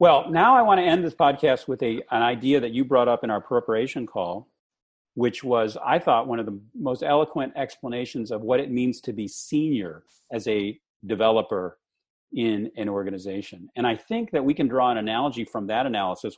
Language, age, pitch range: English, 40-59, 105-155 Hz